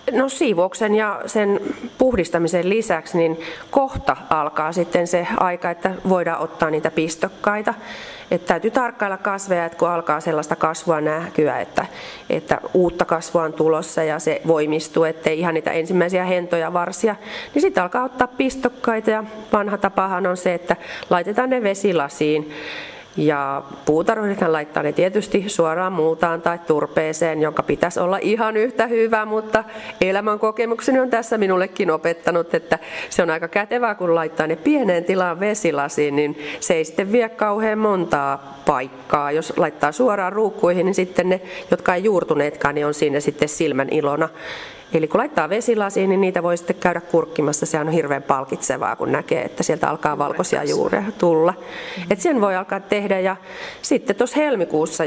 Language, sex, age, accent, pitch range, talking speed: Finnish, female, 30-49, native, 160-210 Hz, 155 wpm